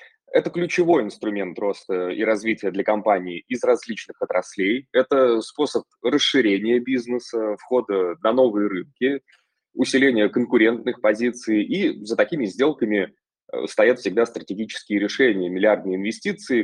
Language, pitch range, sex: Russian, 105-135 Hz, male